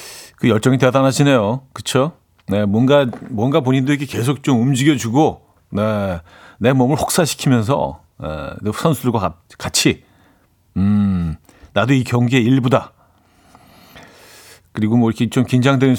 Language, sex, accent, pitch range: Korean, male, native, 105-145 Hz